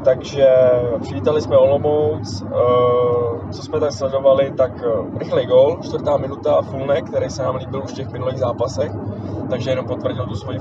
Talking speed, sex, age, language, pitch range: 170 wpm, male, 20-39, Czech, 110-135 Hz